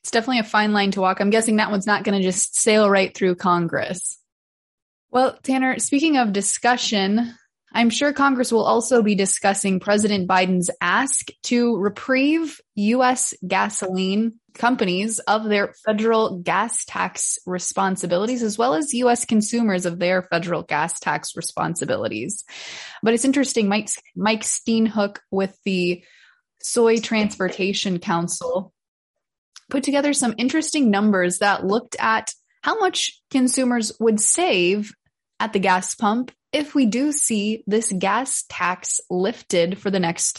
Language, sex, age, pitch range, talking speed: English, female, 20-39, 195-245 Hz, 140 wpm